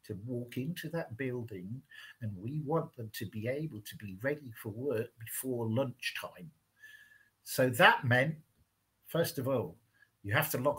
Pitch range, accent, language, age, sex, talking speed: 115-160 Hz, British, English, 50-69, male, 160 wpm